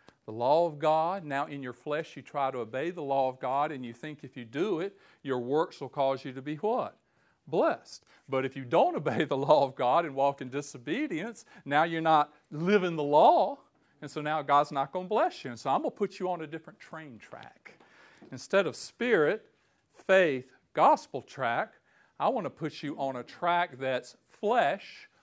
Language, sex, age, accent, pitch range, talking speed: English, male, 50-69, American, 130-170 Hz, 210 wpm